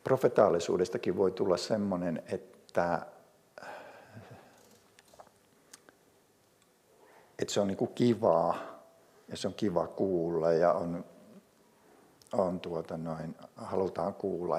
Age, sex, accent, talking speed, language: 60-79, male, native, 80 wpm, Finnish